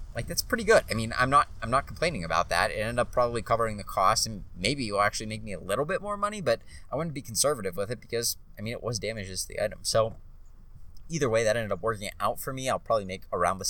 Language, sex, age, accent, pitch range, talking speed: English, male, 30-49, American, 95-130 Hz, 280 wpm